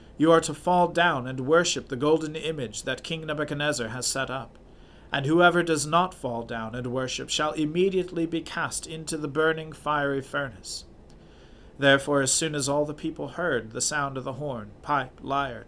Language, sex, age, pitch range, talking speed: English, male, 40-59, 130-160 Hz, 185 wpm